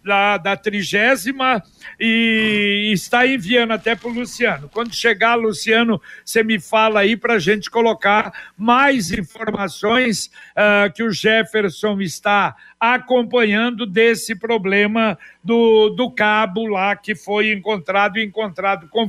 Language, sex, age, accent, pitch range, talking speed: Portuguese, male, 60-79, Brazilian, 210-240 Hz, 120 wpm